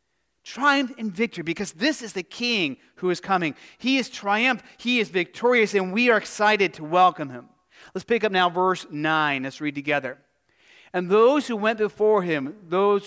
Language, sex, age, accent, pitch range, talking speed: English, male, 40-59, American, 160-205 Hz, 185 wpm